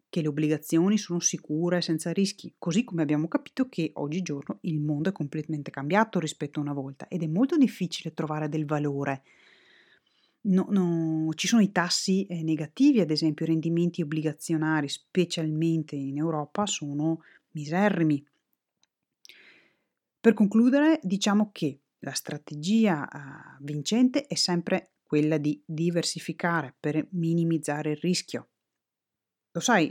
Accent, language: native, Italian